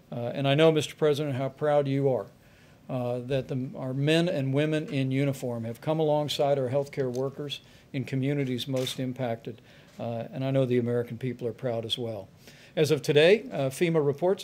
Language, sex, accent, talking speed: English, male, American, 185 wpm